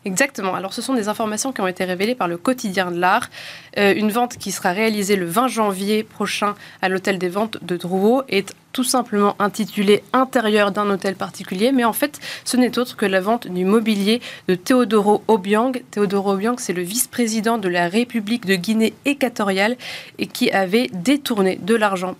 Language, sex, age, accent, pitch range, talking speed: French, female, 20-39, French, 185-230 Hz, 190 wpm